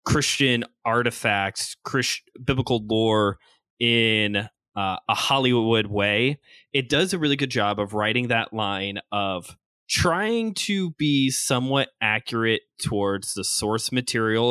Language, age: English, 20-39